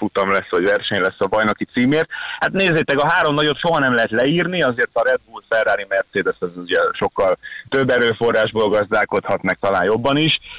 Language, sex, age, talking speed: Hungarian, male, 30-49, 180 wpm